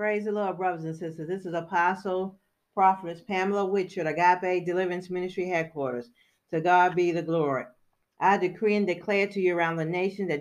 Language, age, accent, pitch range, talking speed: English, 40-59, American, 155-180 Hz, 180 wpm